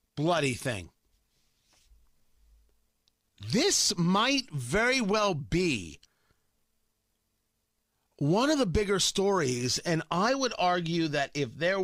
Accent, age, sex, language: American, 40-59, male, English